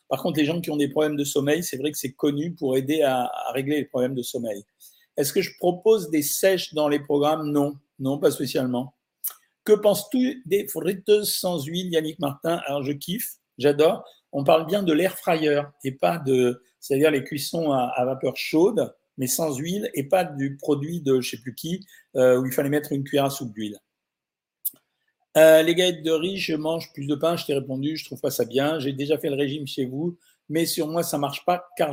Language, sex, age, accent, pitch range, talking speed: French, male, 50-69, French, 140-175 Hz, 225 wpm